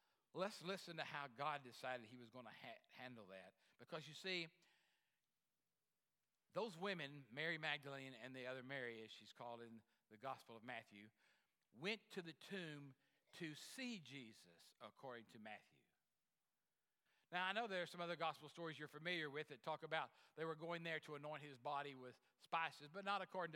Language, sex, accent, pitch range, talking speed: English, male, American, 135-175 Hz, 175 wpm